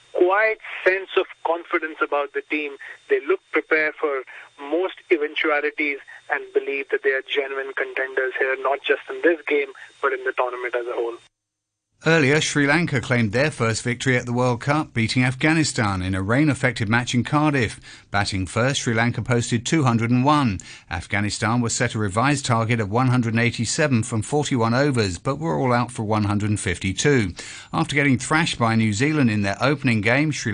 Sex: male